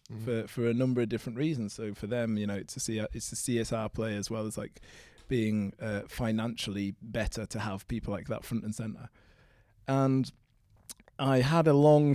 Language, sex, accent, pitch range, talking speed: English, male, British, 105-125 Hz, 200 wpm